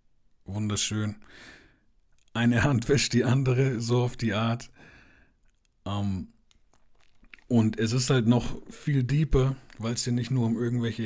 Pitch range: 95-115 Hz